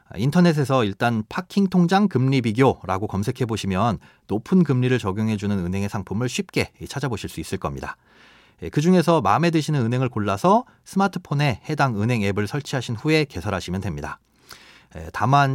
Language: Korean